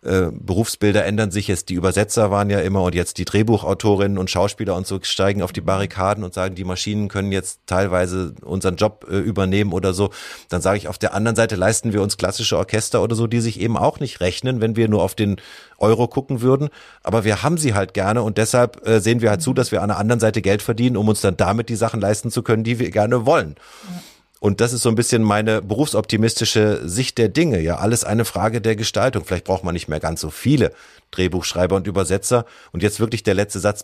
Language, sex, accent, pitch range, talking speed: German, male, German, 95-110 Hz, 225 wpm